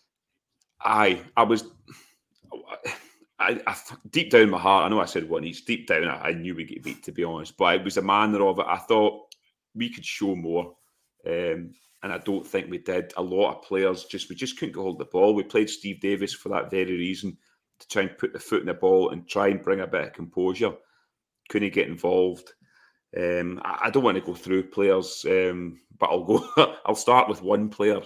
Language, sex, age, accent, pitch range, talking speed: English, male, 30-49, British, 90-120 Hz, 225 wpm